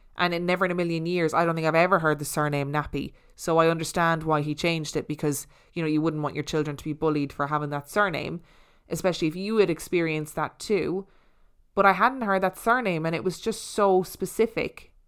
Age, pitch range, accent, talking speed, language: 20-39, 155-180 Hz, Irish, 225 wpm, English